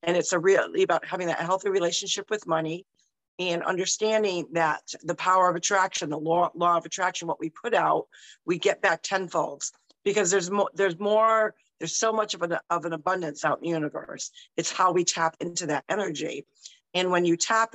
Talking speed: 190 wpm